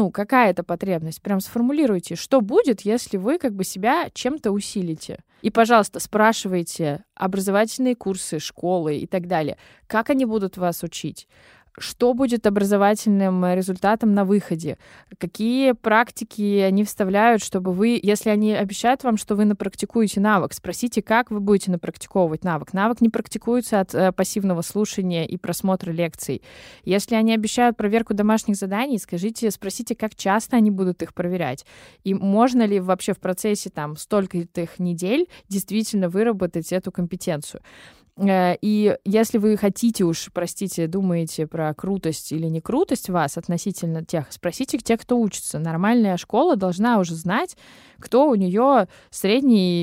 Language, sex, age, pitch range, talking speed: Russian, female, 20-39, 180-225 Hz, 145 wpm